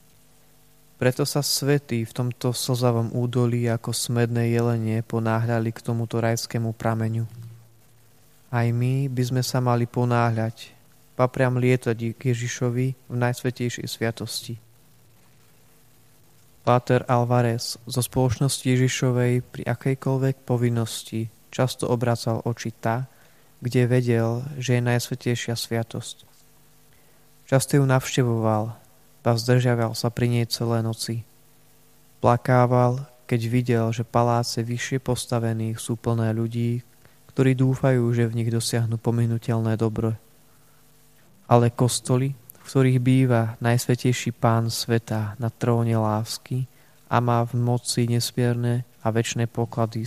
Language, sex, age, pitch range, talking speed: Slovak, male, 20-39, 115-130 Hz, 110 wpm